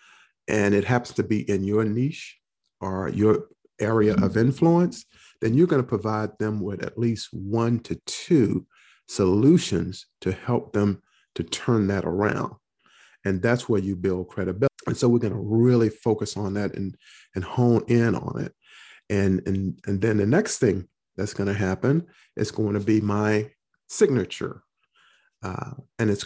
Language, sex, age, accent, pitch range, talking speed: English, male, 50-69, American, 100-115 Hz, 160 wpm